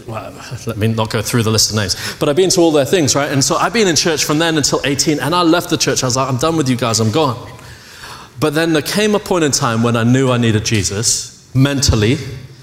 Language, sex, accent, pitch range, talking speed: English, male, British, 120-155 Hz, 270 wpm